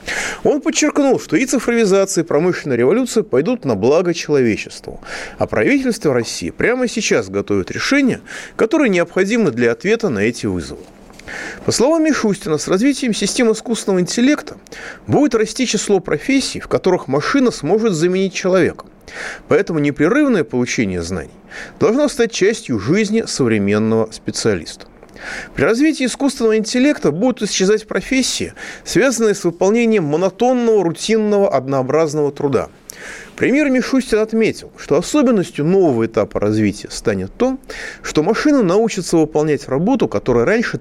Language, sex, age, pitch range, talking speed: Russian, male, 30-49, 145-235 Hz, 125 wpm